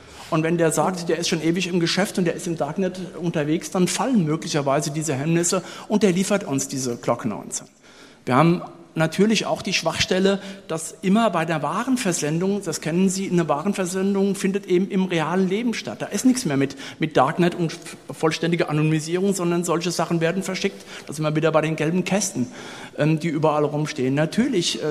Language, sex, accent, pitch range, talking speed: German, male, German, 155-185 Hz, 185 wpm